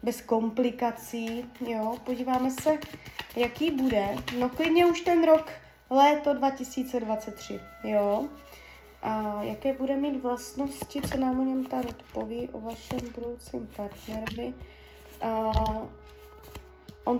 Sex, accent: female, native